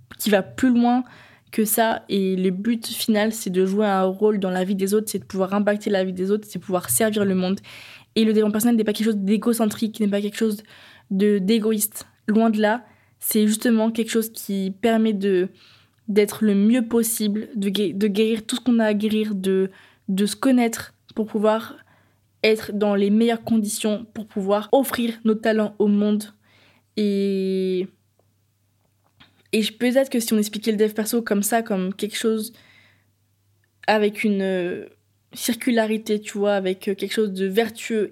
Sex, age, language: female, 20-39, French